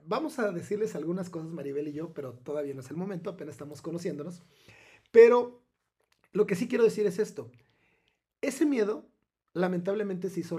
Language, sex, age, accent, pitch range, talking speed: Spanish, male, 40-59, Mexican, 140-180 Hz, 170 wpm